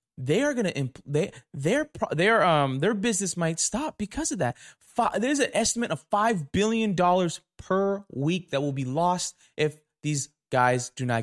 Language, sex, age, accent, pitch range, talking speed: English, male, 20-39, American, 155-230 Hz, 170 wpm